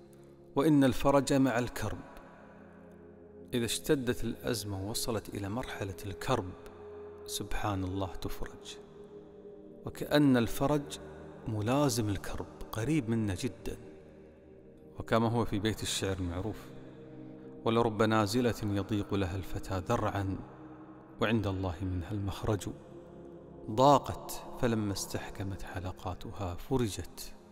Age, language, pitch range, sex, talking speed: 40-59, Arabic, 85-115 Hz, male, 90 wpm